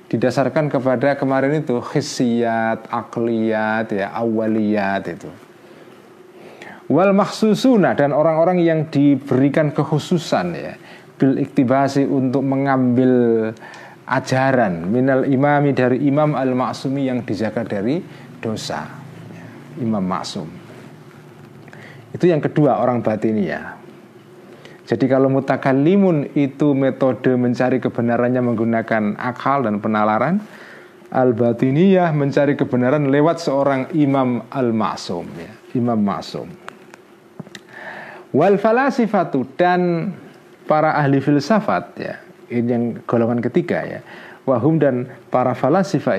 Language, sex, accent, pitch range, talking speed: Indonesian, male, native, 120-150 Hz, 95 wpm